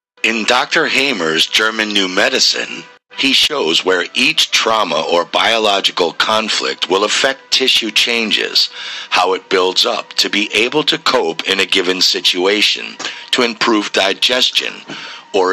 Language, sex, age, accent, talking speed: English, male, 50-69, American, 135 wpm